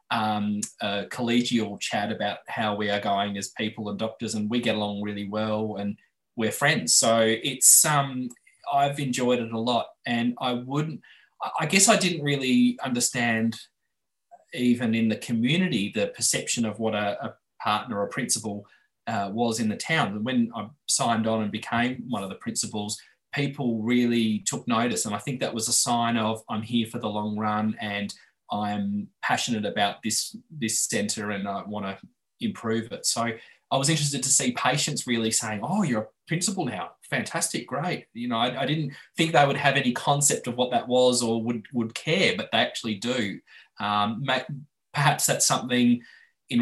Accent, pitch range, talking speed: Australian, 105-135 Hz, 185 wpm